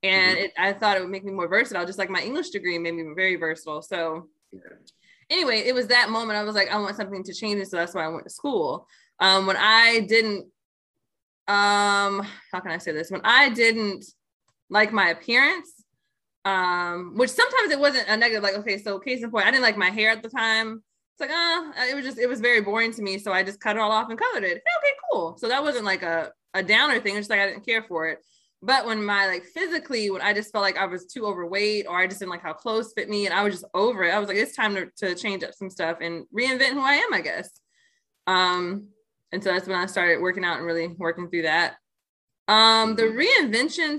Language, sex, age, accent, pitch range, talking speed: English, female, 20-39, American, 185-230 Hz, 245 wpm